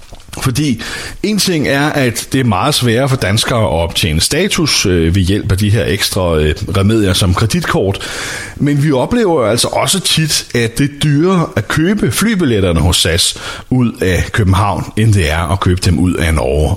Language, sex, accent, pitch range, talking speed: Danish, male, native, 95-125 Hz, 175 wpm